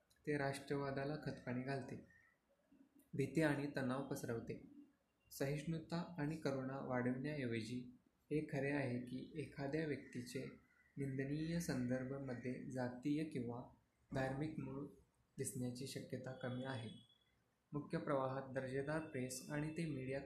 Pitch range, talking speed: 125-145 Hz, 105 wpm